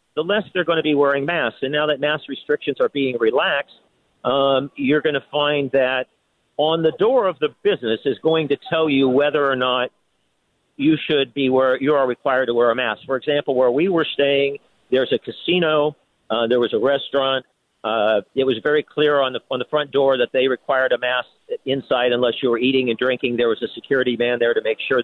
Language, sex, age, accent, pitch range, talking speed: English, male, 50-69, American, 130-180 Hz, 225 wpm